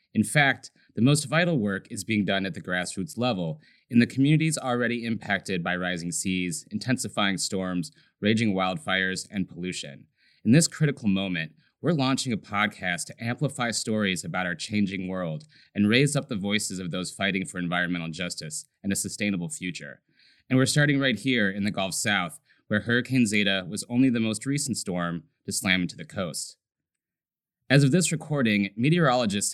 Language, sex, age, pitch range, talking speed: English, male, 30-49, 95-130 Hz, 175 wpm